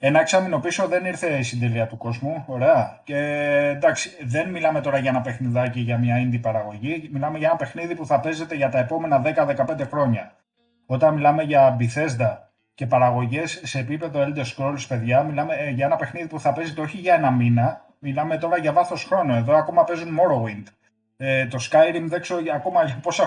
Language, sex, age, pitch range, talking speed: Greek, male, 30-49, 125-165 Hz, 185 wpm